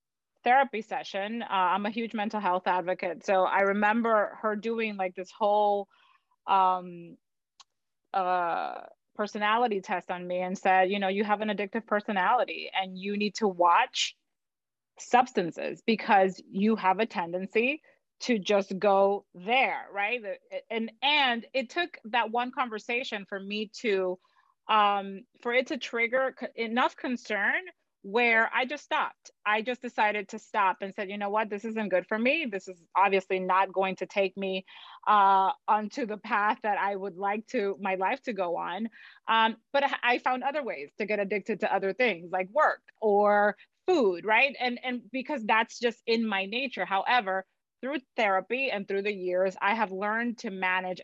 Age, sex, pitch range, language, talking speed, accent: 30-49, female, 195-240 Hz, English, 170 wpm, American